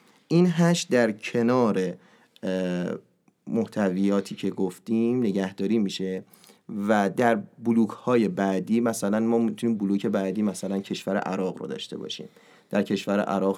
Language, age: Persian, 30-49